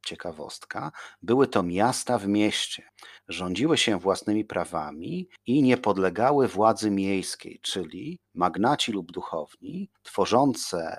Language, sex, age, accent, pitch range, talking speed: Polish, male, 40-59, native, 95-120 Hz, 110 wpm